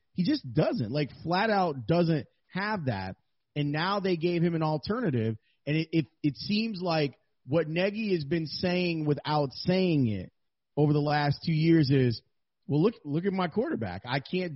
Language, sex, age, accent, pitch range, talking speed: English, male, 30-49, American, 145-185 Hz, 180 wpm